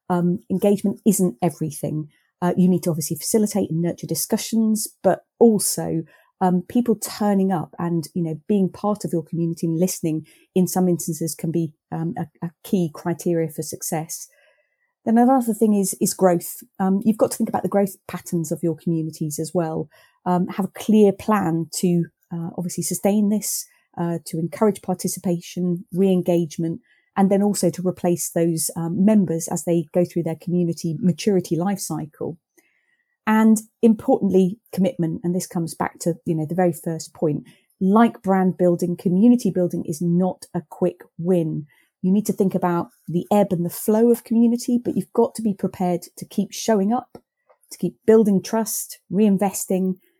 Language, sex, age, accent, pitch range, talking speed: English, female, 30-49, British, 170-205 Hz, 170 wpm